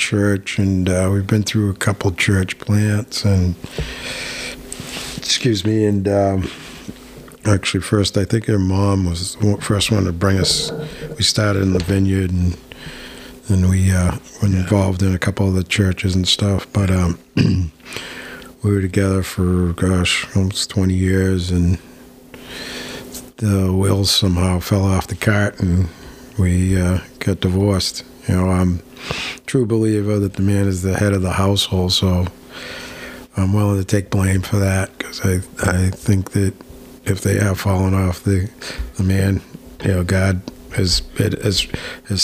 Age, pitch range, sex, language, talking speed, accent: 50-69, 95-105 Hz, male, English, 160 wpm, American